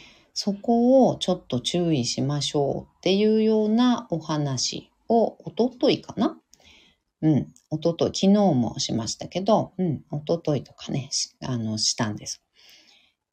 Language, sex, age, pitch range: Japanese, female, 40-59, 130-220 Hz